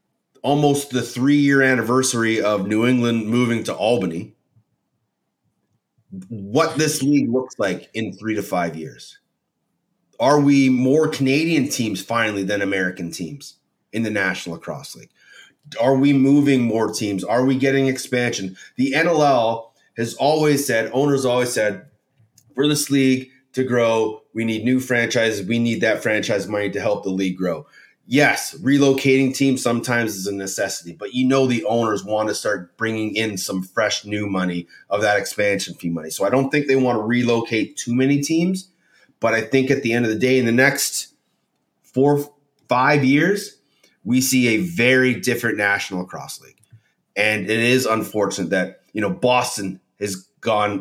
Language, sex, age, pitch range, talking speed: English, male, 30-49, 105-135 Hz, 165 wpm